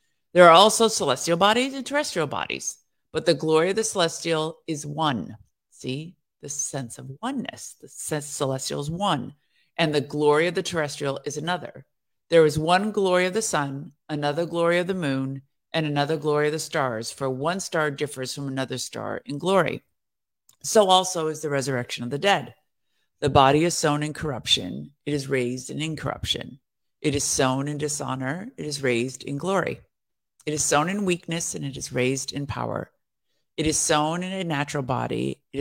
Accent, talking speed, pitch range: American, 180 wpm, 135-170 Hz